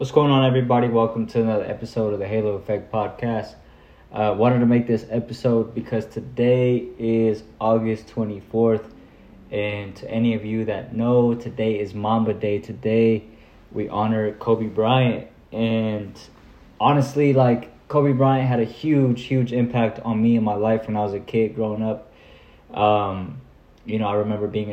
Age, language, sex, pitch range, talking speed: 20-39, English, male, 105-115 Hz, 165 wpm